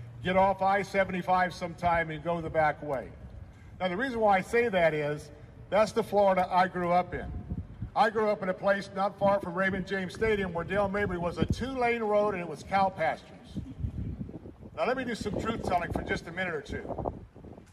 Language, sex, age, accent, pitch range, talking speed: English, male, 50-69, American, 185-225 Hz, 205 wpm